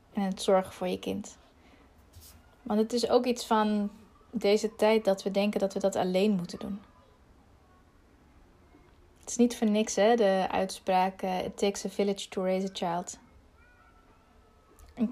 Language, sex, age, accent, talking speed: Dutch, female, 20-39, Dutch, 160 wpm